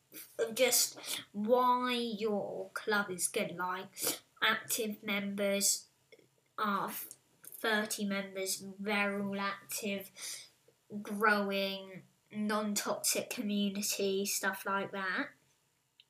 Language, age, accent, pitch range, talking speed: English, 10-29, British, 200-230 Hz, 80 wpm